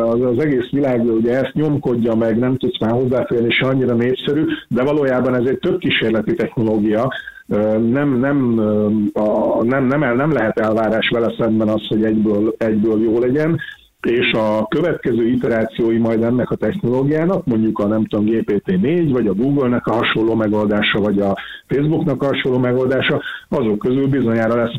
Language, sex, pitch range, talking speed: Hungarian, male, 110-135 Hz, 165 wpm